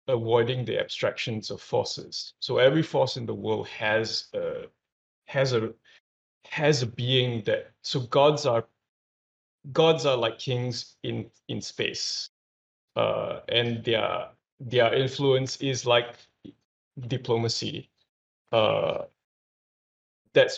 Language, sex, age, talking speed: English, male, 20-39, 115 wpm